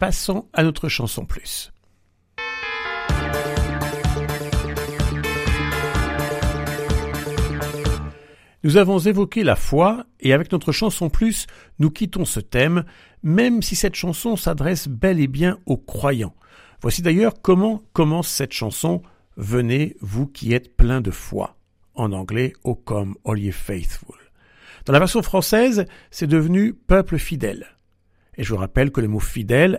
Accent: French